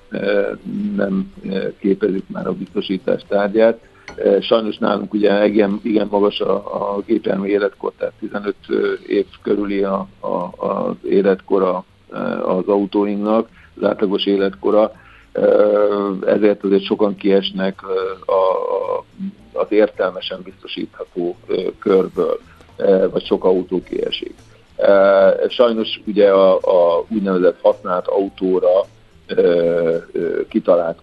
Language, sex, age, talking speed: Hungarian, male, 50-69, 95 wpm